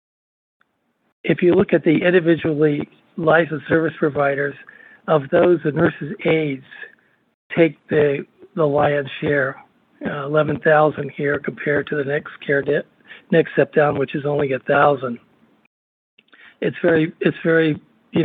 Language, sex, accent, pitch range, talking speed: English, male, American, 145-170 Hz, 140 wpm